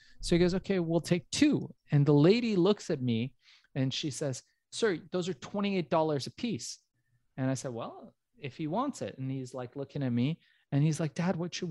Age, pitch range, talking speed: 30-49, 120-160 Hz, 215 wpm